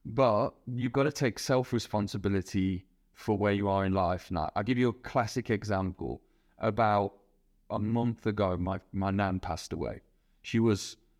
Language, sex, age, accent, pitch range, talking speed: English, male, 30-49, British, 95-115 Hz, 160 wpm